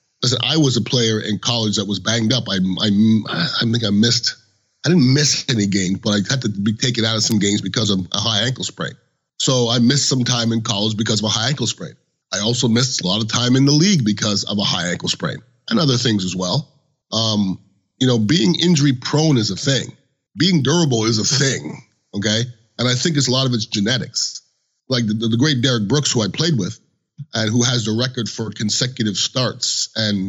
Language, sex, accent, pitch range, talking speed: English, male, American, 105-135 Hz, 230 wpm